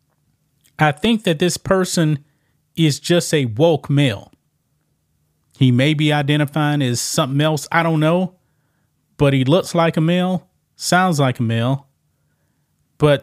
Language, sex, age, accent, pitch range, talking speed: English, male, 30-49, American, 130-165 Hz, 140 wpm